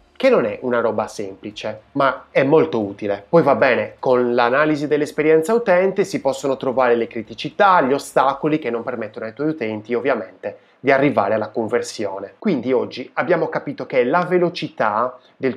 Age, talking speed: 20-39, 165 wpm